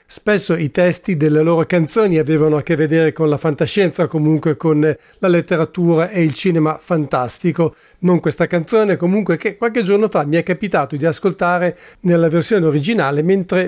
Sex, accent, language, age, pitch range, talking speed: male, Italian, English, 40-59, 160-185 Hz, 165 wpm